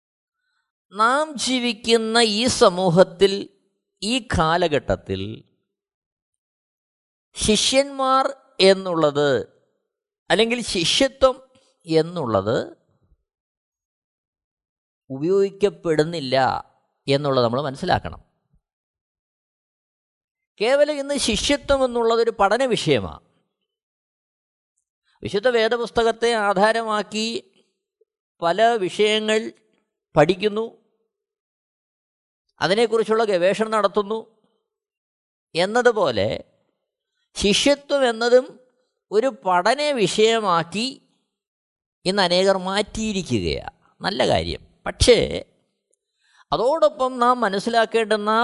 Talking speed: 55 wpm